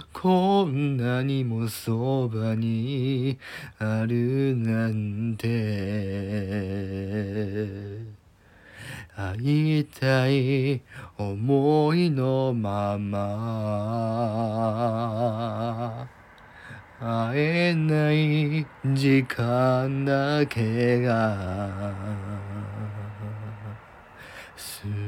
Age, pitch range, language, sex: 40-59, 115-160 Hz, Japanese, male